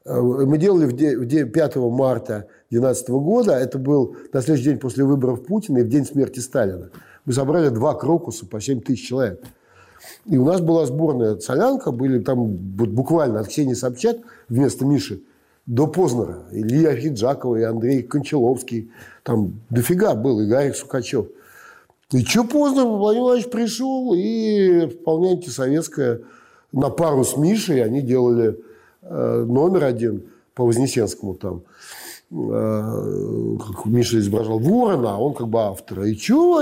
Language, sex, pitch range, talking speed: Russian, male, 120-180 Hz, 140 wpm